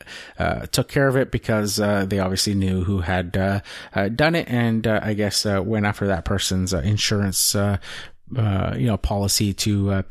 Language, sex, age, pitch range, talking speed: English, male, 30-49, 105-125 Hz, 200 wpm